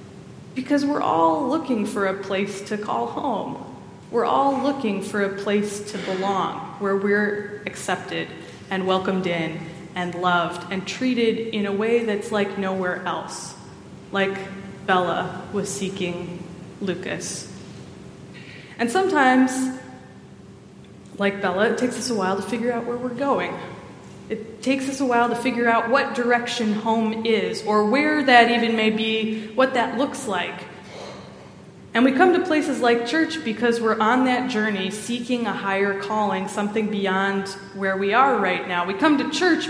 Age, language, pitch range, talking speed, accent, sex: 20-39, English, 195-245 Hz, 155 wpm, American, female